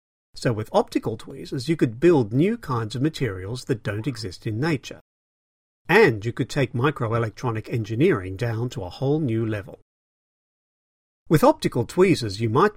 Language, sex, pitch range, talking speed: English, male, 100-135 Hz, 155 wpm